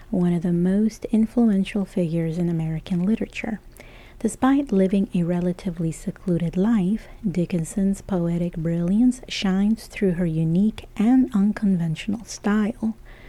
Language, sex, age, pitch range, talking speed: English, female, 40-59, 175-215 Hz, 115 wpm